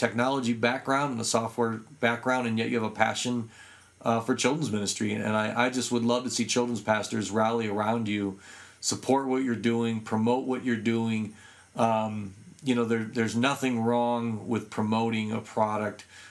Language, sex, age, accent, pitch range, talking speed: English, male, 40-59, American, 110-125 Hz, 175 wpm